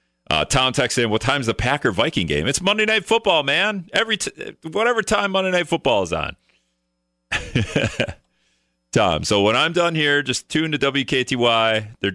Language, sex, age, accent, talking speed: English, male, 40-59, American, 170 wpm